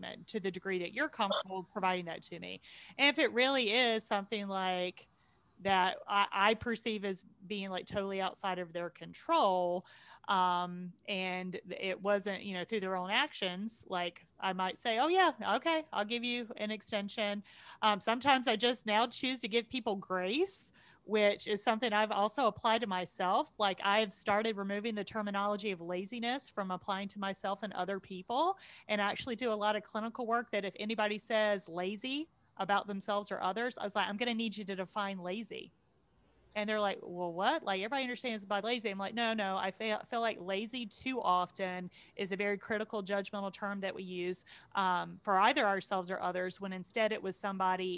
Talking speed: 195 wpm